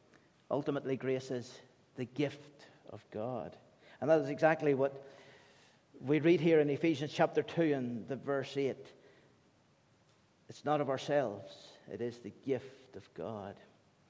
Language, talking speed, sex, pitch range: English, 135 wpm, male, 140-180 Hz